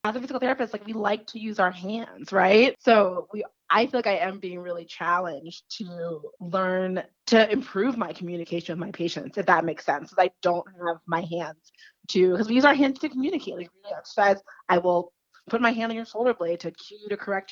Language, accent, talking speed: English, American, 225 wpm